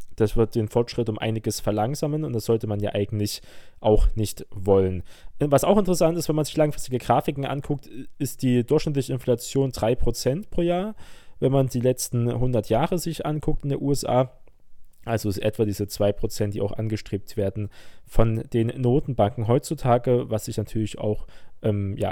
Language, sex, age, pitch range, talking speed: German, male, 20-39, 105-140 Hz, 175 wpm